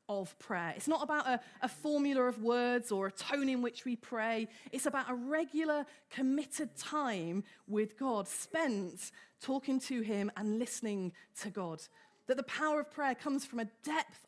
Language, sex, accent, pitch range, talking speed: English, female, British, 210-290 Hz, 175 wpm